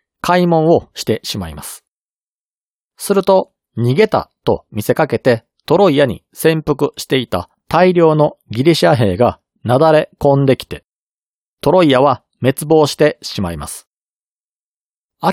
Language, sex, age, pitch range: Japanese, male, 40-59, 115-175 Hz